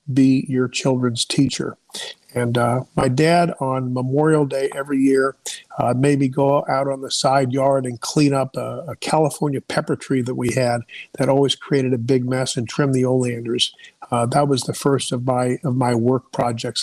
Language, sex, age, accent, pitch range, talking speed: English, male, 50-69, American, 125-155 Hz, 195 wpm